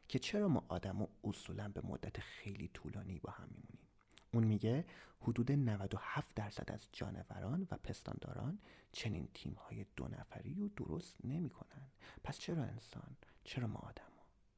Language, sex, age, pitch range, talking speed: Persian, male, 30-49, 105-145 Hz, 145 wpm